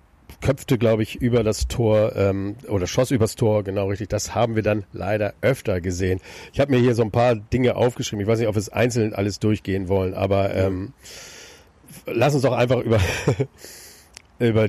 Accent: German